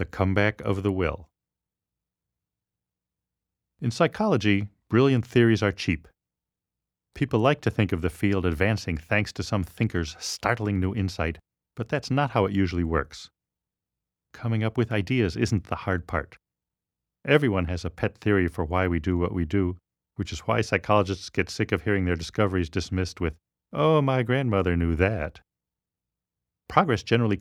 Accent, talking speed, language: American, 160 wpm, English